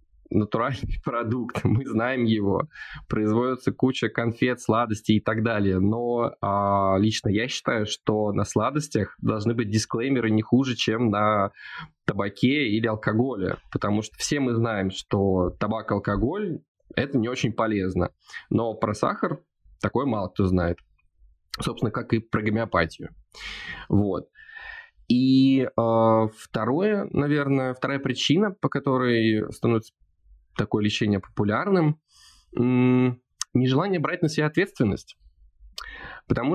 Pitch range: 105-130 Hz